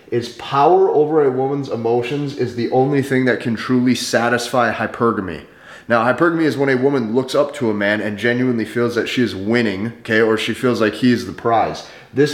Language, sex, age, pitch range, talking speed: English, male, 30-49, 120-145 Hz, 210 wpm